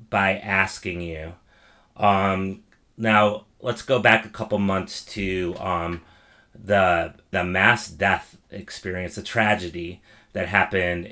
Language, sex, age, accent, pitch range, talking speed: English, male, 30-49, American, 90-110 Hz, 120 wpm